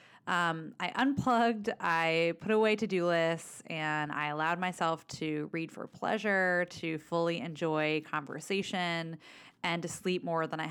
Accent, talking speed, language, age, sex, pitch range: American, 145 wpm, English, 20-39, female, 155-180 Hz